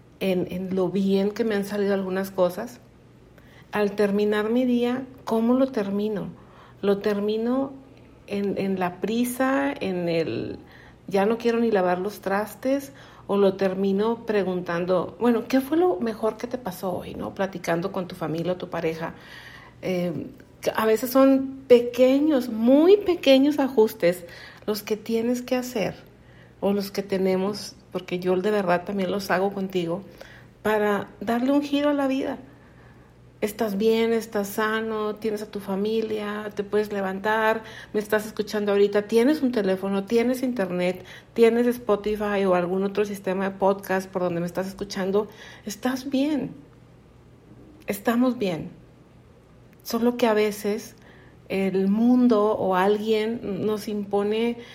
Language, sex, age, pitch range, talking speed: Spanish, female, 50-69, 190-230 Hz, 145 wpm